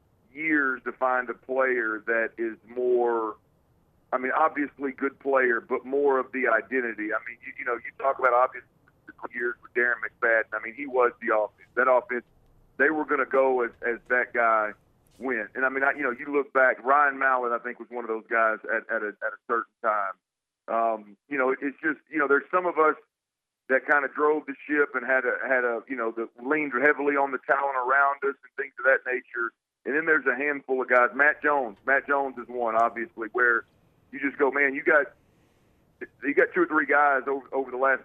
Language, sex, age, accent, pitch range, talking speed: English, male, 40-59, American, 120-145 Hz, 220 wpm